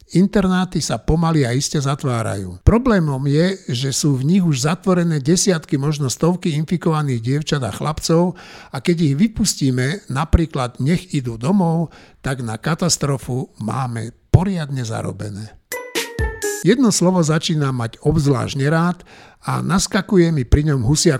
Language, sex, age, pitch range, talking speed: Slovak, male, 60-79, 130-175 Hz, 135 wpm